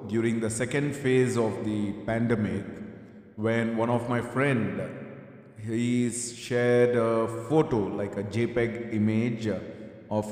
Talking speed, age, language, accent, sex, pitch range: 120 wpm, 30-49, English, Indian, male, 105-120 Hz